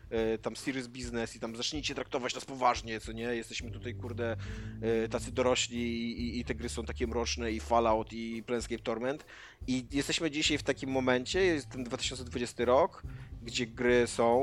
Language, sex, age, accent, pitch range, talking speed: Polish, male, 20-39, native, 115-145 Hz, 165 wpm